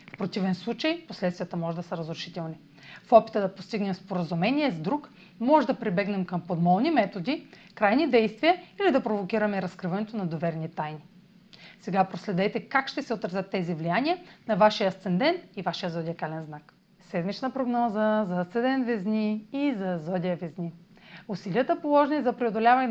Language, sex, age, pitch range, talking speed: Bulgarian, female, 30-49, 185-260 Hz, 150 wpm